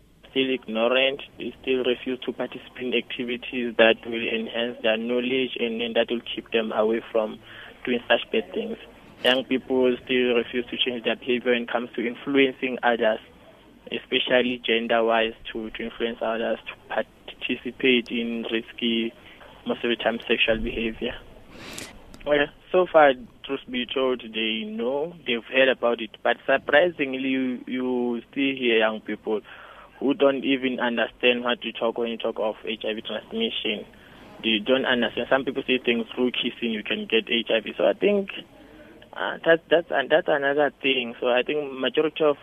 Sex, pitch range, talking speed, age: male, 115-130 Hz, 165 wpm, 20-39